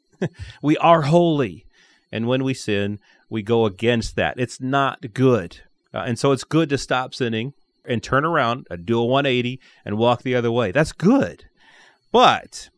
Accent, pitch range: American, 110-140 Hz